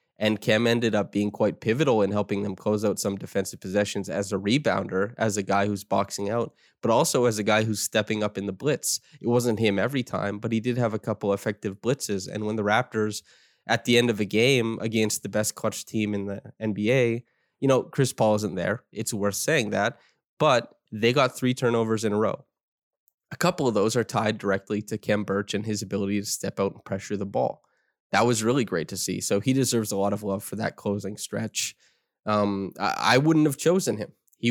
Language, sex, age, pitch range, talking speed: English, male, 20-39, 105-120 Hz, 225 wpm